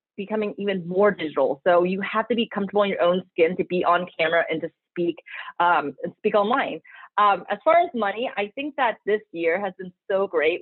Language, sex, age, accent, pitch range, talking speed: English, female, 30-49, American, 175-225 Hz, 220 wpm